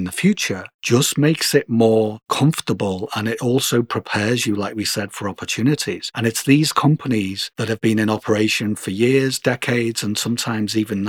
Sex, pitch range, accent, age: male, 100-120 Hz, British, 40-59